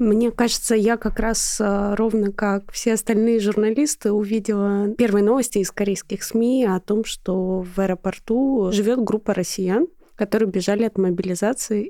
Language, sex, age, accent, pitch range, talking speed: Russian, female, 20-39, native, 200-240 Hz, 140 wpm